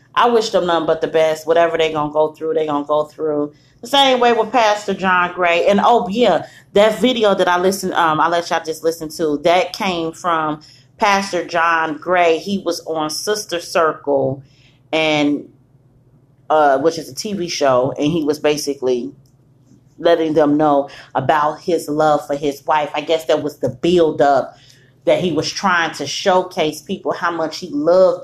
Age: 30-49